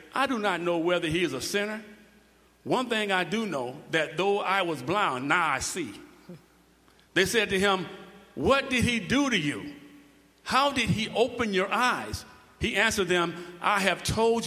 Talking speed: 185 wpm